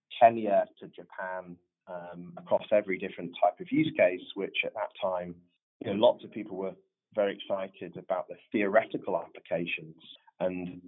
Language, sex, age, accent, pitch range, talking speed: English, male, 30-49, British, 90-115 Hz, 155 wpm